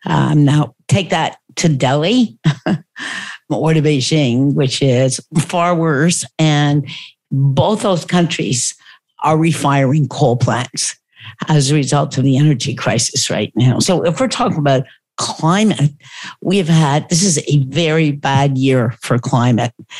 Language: English